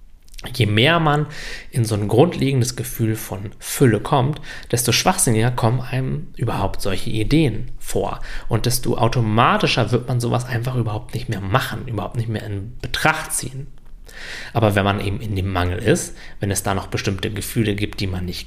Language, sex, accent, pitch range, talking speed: German, male, German, 105-130 Hz, 175 wpm